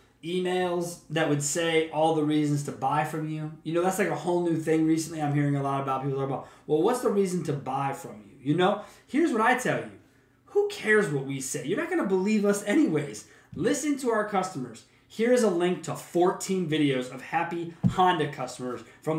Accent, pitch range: American, 155-215 Hz